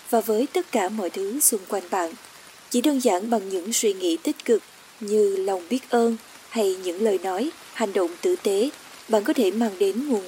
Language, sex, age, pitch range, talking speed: Vietnamese, female, 20-39, 200-275 Hz, 210 wpm